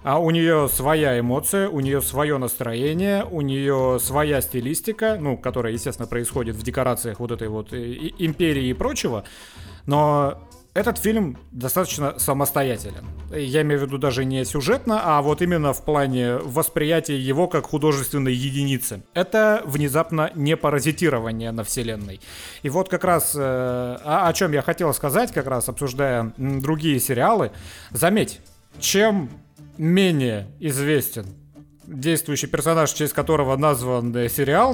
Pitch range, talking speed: 125-170 Hz, 135 wpm